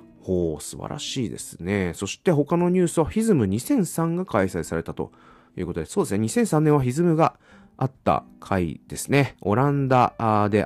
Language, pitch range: Japanese, 85-135 Hz